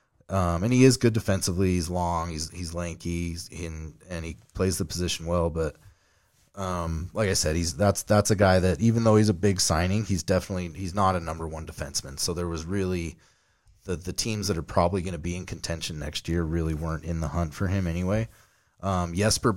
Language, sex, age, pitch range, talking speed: English, male, 30-49, 85-100 Hz, 215 wpm